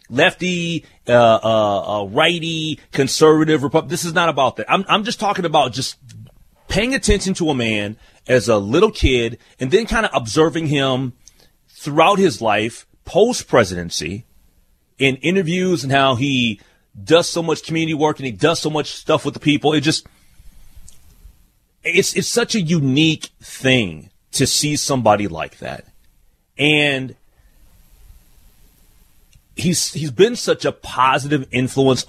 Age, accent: 30-49, American